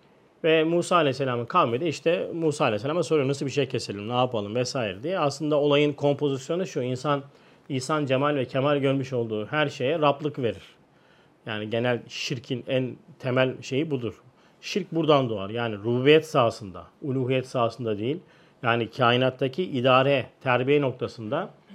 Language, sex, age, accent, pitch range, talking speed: Turkish, male, 40-59, native, 130-160 Hz, 145 wpm